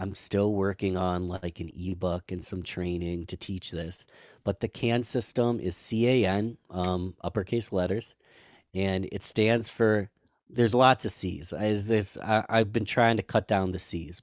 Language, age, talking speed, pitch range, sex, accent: English, 30-49, 175 wpm, 95-115 Hz, male, American